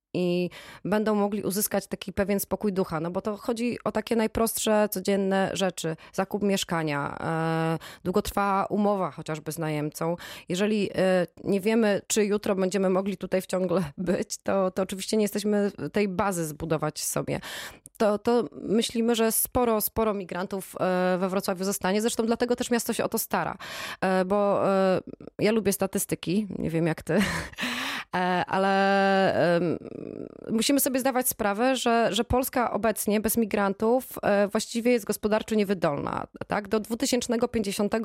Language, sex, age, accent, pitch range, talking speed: Polish, female, 20-39, native, 190-225 Hz, 145 wpm